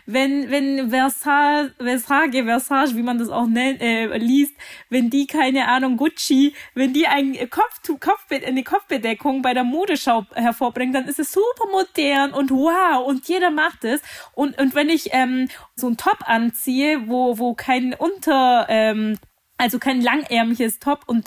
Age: 20-39